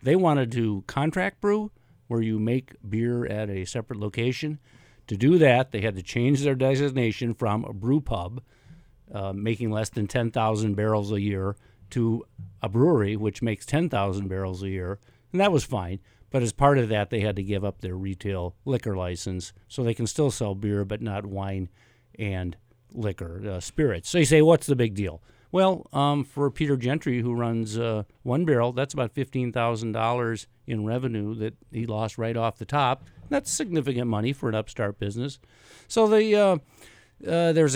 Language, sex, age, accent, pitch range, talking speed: English, male, 50-69, American, 105-140 Hz, 185 wpm